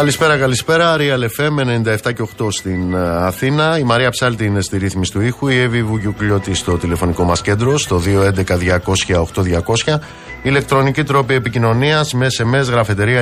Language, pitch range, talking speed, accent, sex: Greek, 95-130 Hz, 135 wpm, native, male